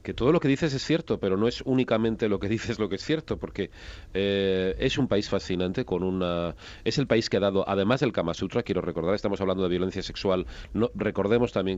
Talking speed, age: 235 wpm, 40-59